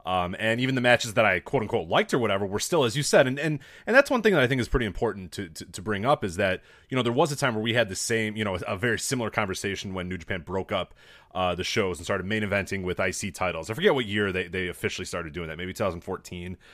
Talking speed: 285 wpm